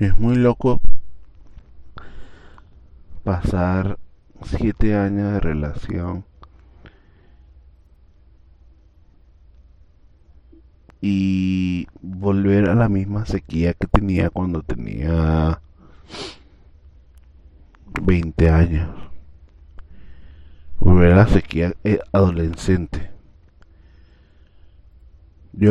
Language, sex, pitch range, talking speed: Spanish, male, 75-100 Hz, 60 wpm